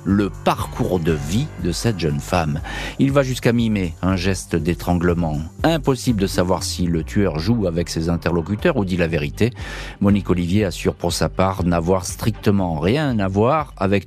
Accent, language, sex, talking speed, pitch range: French, French, male, 175 wpm, 95-115 Hz